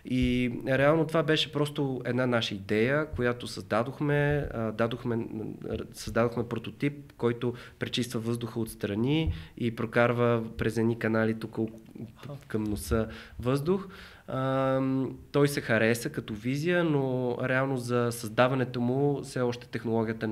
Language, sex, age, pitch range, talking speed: Bulgarian, male, 20-39, 110-125 Hz, 125 wpm